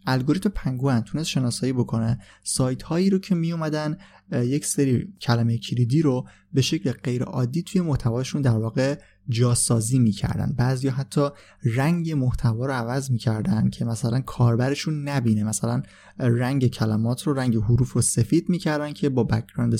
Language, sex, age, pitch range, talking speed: Persian, male, 20-39, 115-140 Hz, 150 wpm